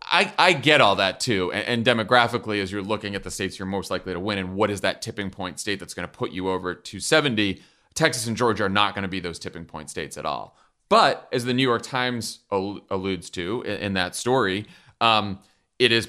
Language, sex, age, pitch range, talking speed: English, male, 30-49, 95-110 Hz, 235 wpm